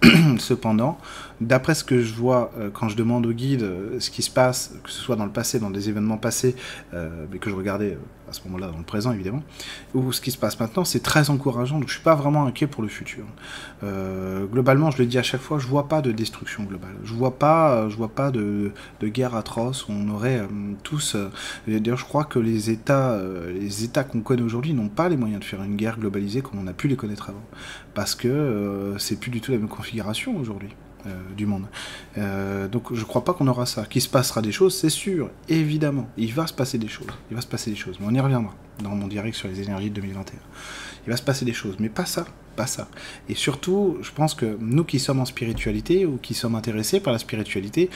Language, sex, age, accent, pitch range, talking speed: French, male, 30-49, French, 105-140 Hz, 250 wpm